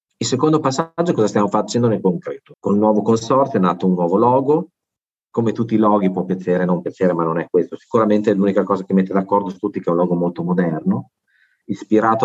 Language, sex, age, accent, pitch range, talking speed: Italian, male, 40-59, native, 95-140 Hz, 230 wpm